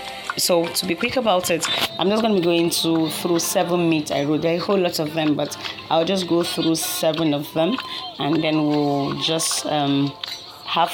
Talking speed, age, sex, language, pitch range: 205 wpm, 30-49, female, English, 150-175 Hz